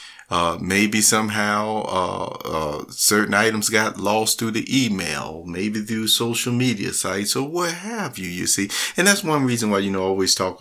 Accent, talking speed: American, 185 wpm